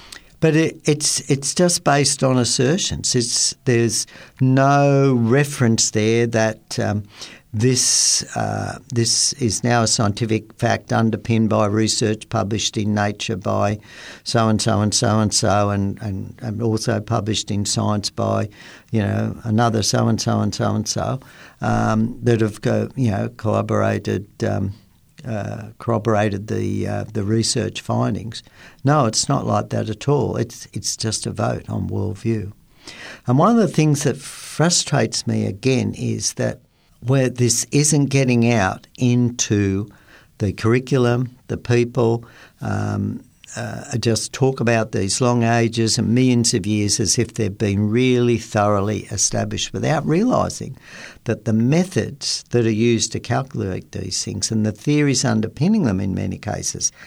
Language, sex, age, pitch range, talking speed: English, male, 60-79, 105-120 Hz, 140 wpm